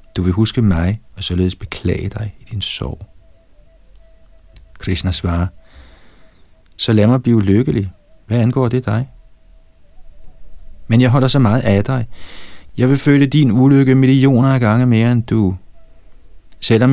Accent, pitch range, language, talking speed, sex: native, 90-115 Hz, Danish, 145 wpm, male